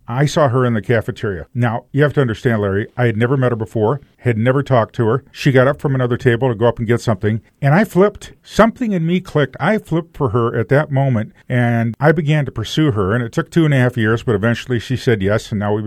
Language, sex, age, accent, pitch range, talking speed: English, male, 40-59, American, 115-145 Hz, 270 wpm